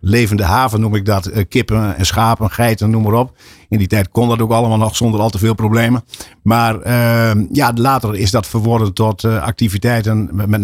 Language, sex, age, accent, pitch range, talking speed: Dutch, male, 50-69, Dutch, 95-115 Hz, 205 wpm